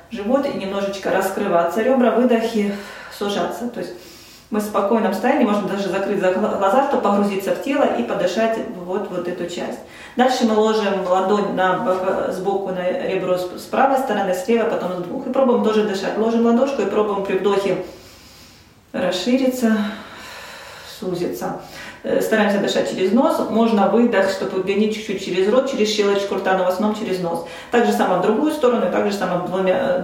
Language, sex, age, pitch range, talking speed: Russian, female, 30-49, 185-235 Hz, 165 wpm